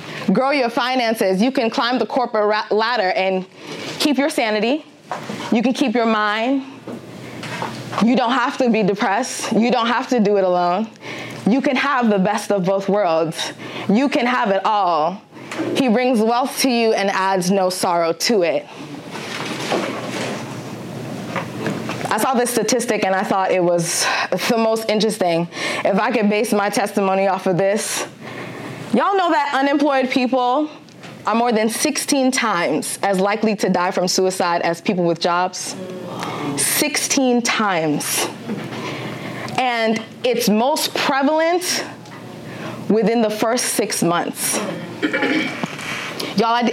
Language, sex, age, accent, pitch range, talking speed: English, female, 20-39, American, 195-255 Hz, 140 wpm